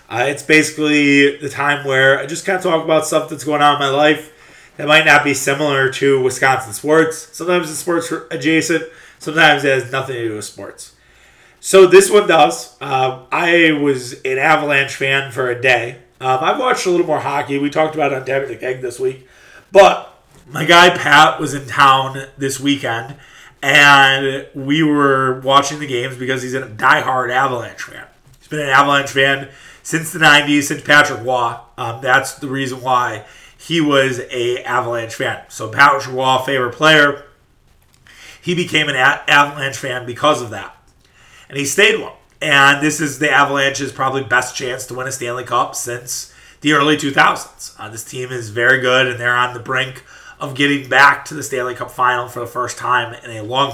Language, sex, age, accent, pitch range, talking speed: English, male, 30-49, American, 125-150 Hz, 190 wpm